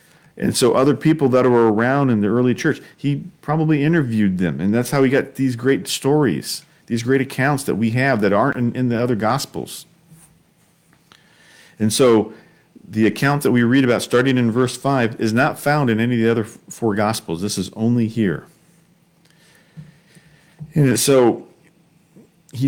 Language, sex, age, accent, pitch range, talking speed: English, male, 50-69, American, 115-160 Hz, 170 wpm